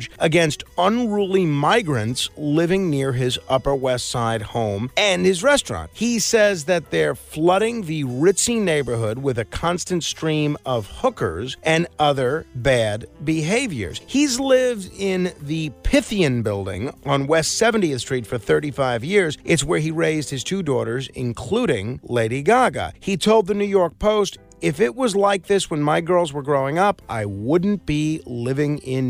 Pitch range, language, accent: 130-185 Hz, English, American